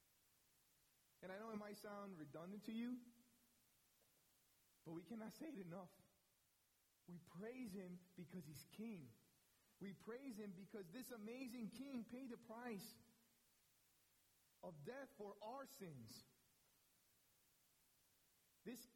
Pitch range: 130-210 Hz